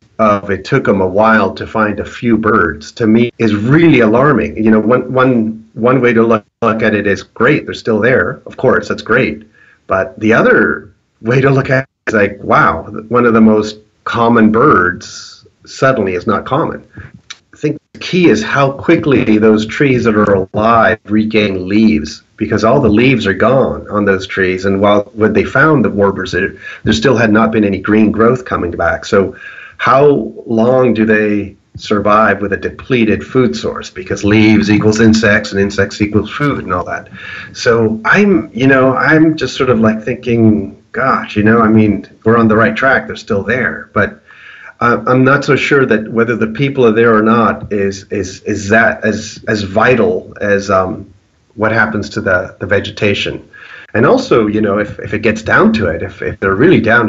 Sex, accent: male, American